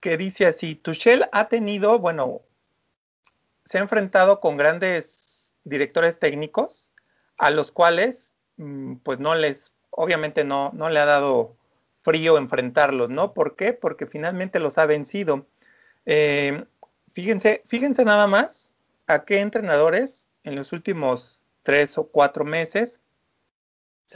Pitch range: 150-205 Hz